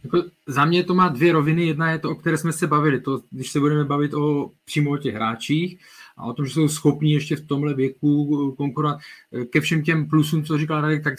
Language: Czech